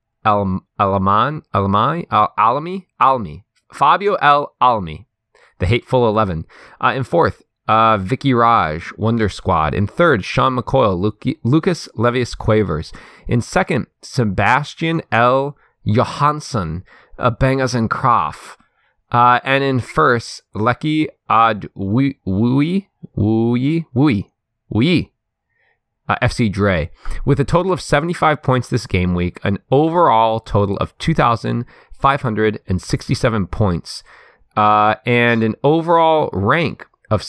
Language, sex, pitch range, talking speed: English, male, 100-130 Hz, 115 wpm